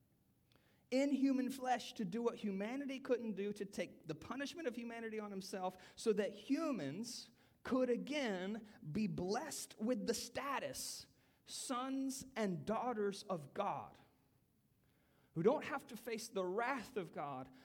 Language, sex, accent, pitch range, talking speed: English, male, American, 190-245 Hz, 140 wpm